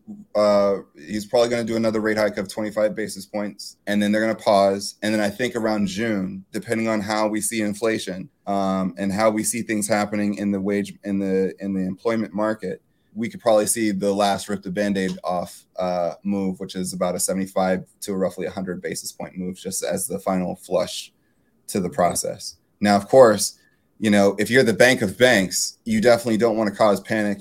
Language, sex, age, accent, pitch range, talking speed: English, male, 20-39, American, 100-110 Hz, 210 wpm